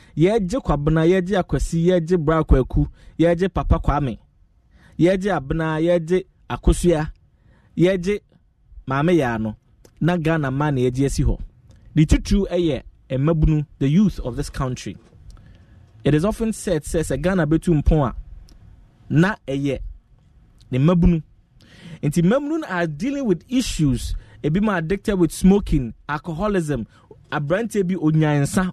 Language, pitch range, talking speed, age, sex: English, 125-180 Hz, 120 wpm, 20-39, male